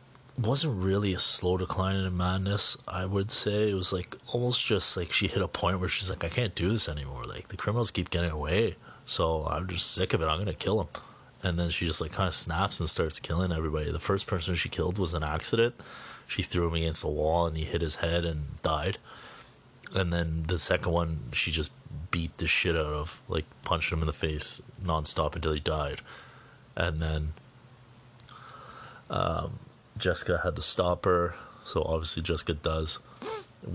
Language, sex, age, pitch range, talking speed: English, male, 30-49, 80-100 Hz, 200 wpm